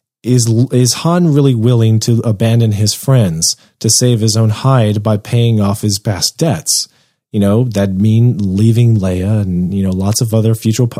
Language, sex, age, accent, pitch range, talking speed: English, male, 30-49, American, 110-135 Hz, 180 wpm